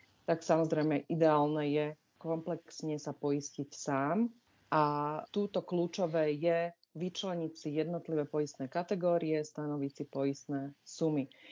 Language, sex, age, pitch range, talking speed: Slovak, female, 30-49, 150-170 Hz, 110 wpm